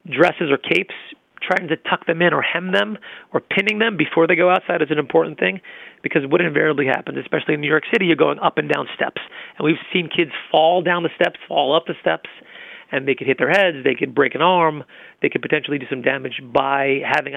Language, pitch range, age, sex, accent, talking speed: English, 140-180 Hz, 30-49, male, American, 235 wpm